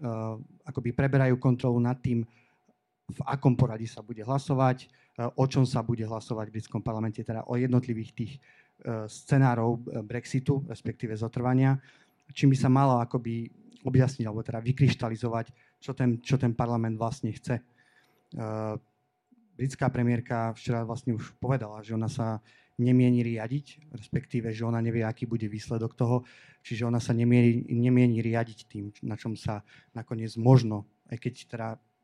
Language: Slovak